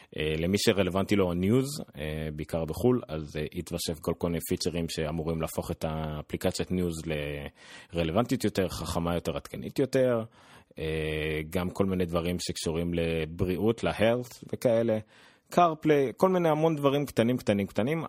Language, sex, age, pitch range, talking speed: Hebrew, male, 30-49, 85-115 Hz, 145 wpm